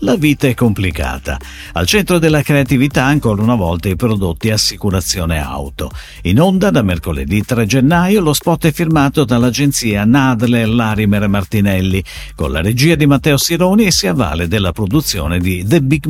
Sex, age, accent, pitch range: male, 50-69, native, 105-155 Hz